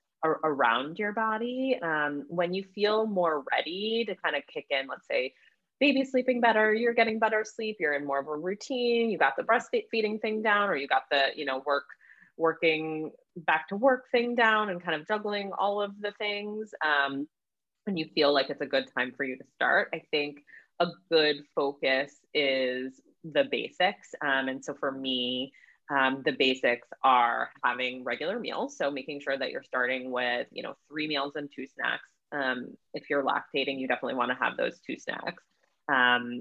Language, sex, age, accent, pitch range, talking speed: English, female, 20-39, American, 140-215 Hz, 190 wpm